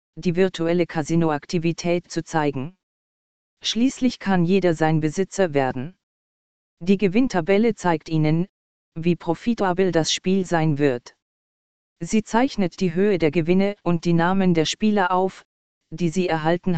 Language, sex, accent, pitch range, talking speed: German, female, German, 165-195 Hz, 130 wpm